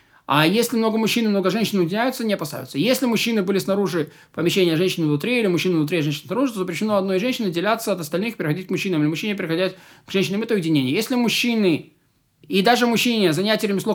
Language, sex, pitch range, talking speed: Russian, male, 160-220 Hz, 200 wpm